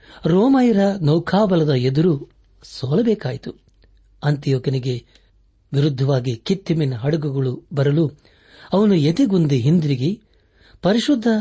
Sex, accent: male, native